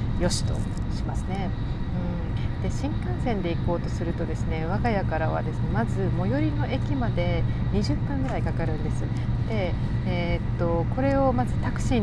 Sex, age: female, 40-59